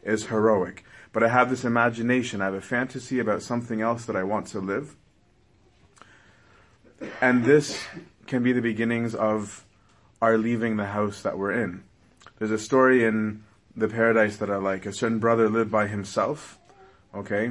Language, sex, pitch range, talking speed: English, male, 105-120 Hz, 170 wpm